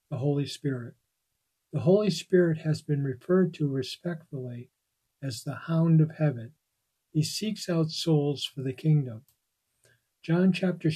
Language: English